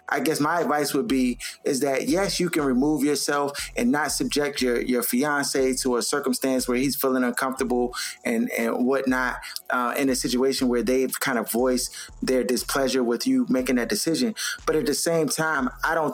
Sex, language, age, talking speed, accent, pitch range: male, English, 20-39, 195 wpm, American, 130-175 Hz